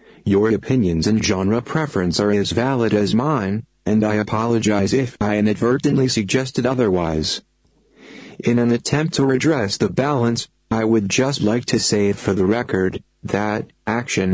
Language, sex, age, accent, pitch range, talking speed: English, male, 40-59, American, 105-125 Hz, 150 wpm